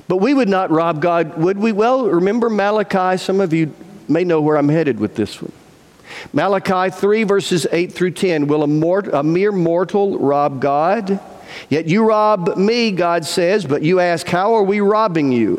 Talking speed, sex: 185 wpm, male